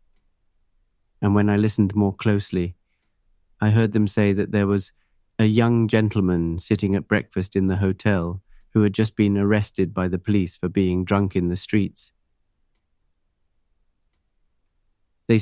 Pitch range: 90-105 Hz